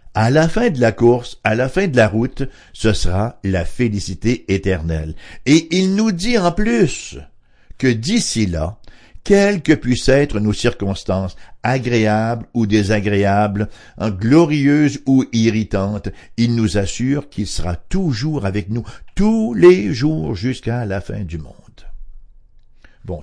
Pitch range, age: 100-145 Hz, 60-79